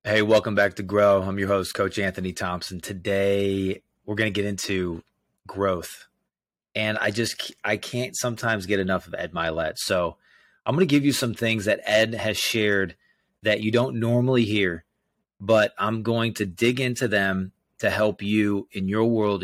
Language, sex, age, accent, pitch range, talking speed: English, male, 30-49, American, 100-125 Hz, 180 wpm